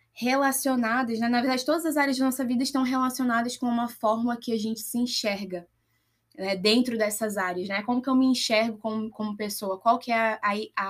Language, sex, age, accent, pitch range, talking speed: Portuguese, female, 10-29, Brazilian, 200-260 Hz, 210 wpm